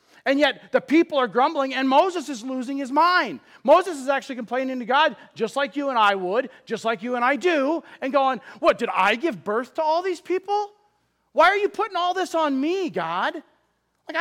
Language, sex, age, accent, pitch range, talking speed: English, male, 40-59, American, 205-285 Hz, 215 wpm